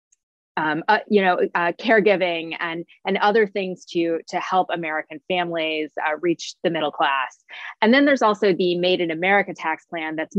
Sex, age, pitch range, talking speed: female, 20-39, 165-200 Hz, 180 wpm